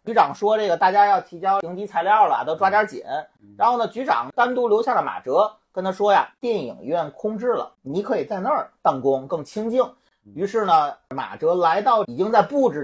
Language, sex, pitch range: Chinese, male, 180-265 Hz